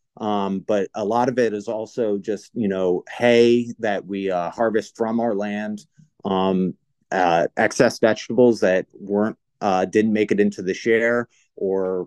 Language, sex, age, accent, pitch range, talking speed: English, male, 30-49, American, 95-120 Hz, 165 wpm